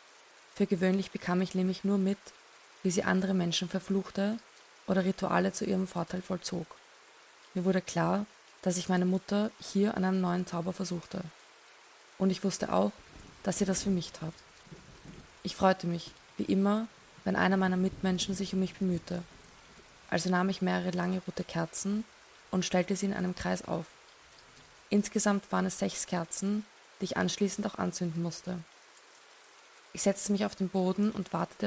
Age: 20-39